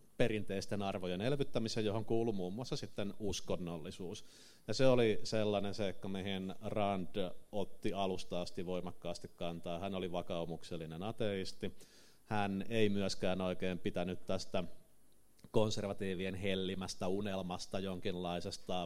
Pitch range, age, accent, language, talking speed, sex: 85-100 Hz, 30-49, native, Finnish, 110 wpm, male